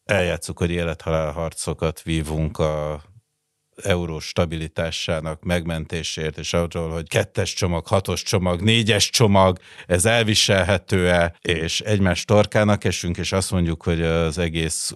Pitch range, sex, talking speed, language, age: 80-100 Hz, male, 115 wpm, Hungarian, 60-79